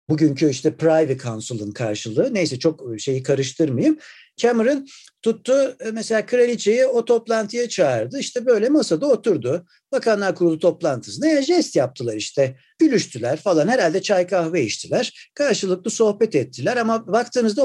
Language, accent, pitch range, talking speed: Turkish, native, 155-245 Hz, 125 wpm